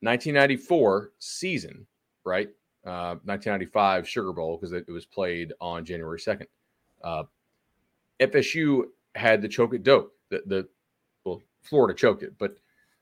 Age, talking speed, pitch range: 30-49, 130 wpm, 90-115 Hz